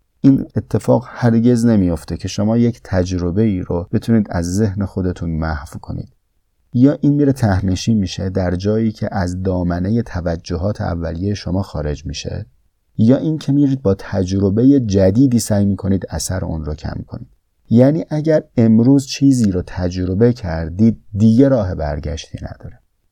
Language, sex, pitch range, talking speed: Persian, male, 85-115 Hz, 145 wpm